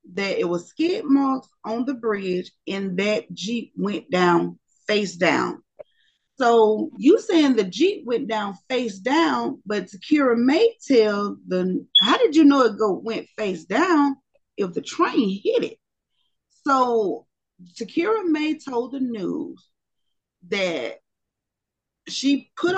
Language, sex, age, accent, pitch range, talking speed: English, female, 30-49, American, 200-325 Hz, 135 wpm